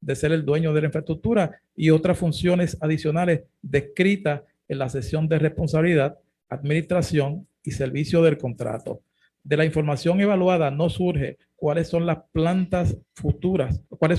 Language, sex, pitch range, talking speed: Spanish, male, 140-170 Hz, 145 wpm